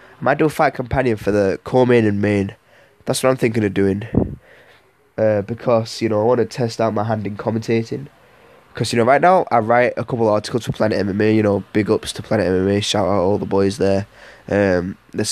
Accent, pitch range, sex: British, 100-125 Hz, male